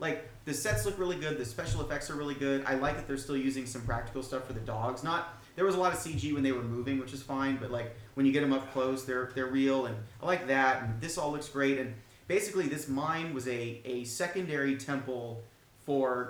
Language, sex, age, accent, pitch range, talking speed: English, male, 30-49, American, 120-145 Hz, 250 wpm